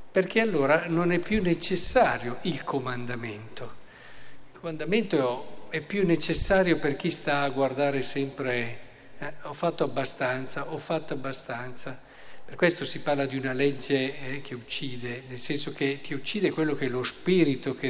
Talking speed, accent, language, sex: 160 wpm, native, Italian, male